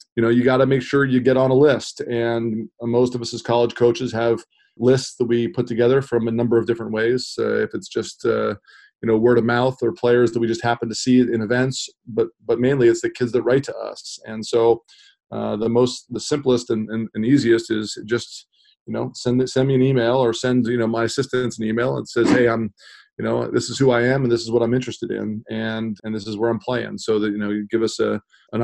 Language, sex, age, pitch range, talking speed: English, male, 20-39, 110-125 Hz, 255 wpm